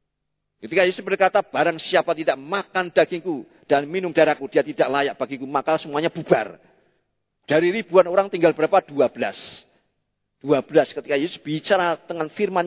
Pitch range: 150-210 Hz